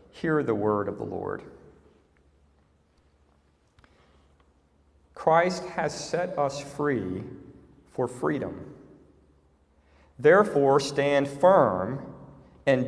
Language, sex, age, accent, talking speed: English, male, 40-59, American, 80 wpm